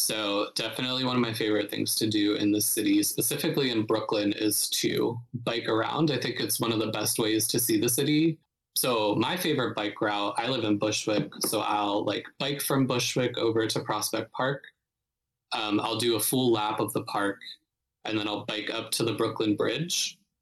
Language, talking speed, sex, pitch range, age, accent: English, 200 wpm, male, 110-130 Hz, 20-39, American